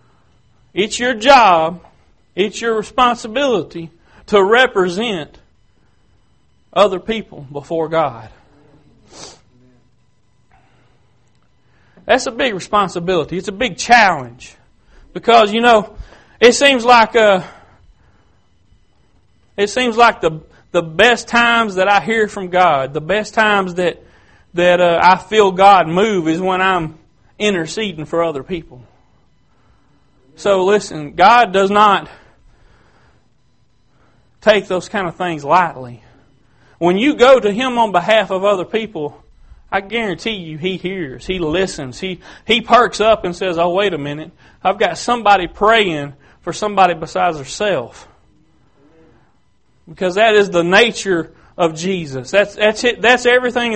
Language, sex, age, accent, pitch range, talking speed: English, male, 40-59, American, 155-215 Hz, 125 wpm